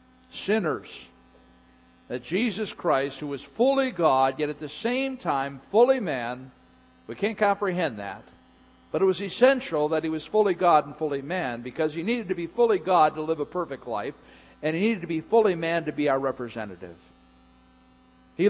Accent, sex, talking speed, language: American, male, 180 wpm, English